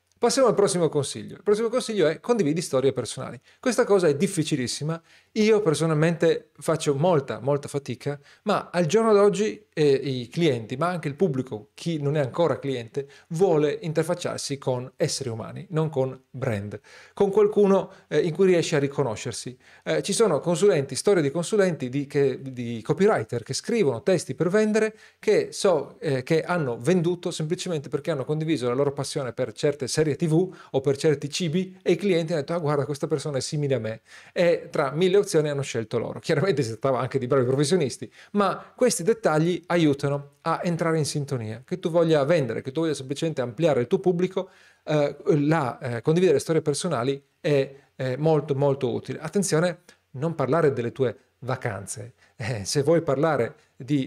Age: 40-59